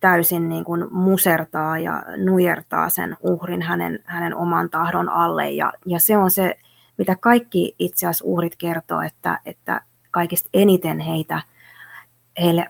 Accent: native